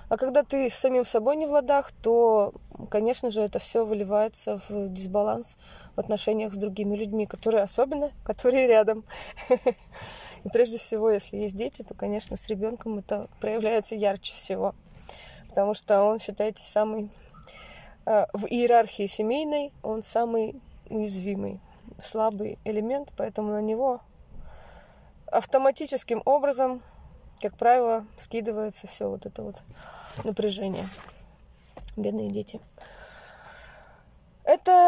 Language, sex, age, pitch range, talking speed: Russian, female, 20-39, 210-260 Hz, 115 wpm